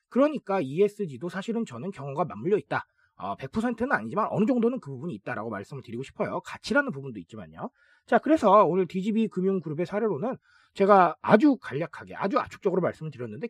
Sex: male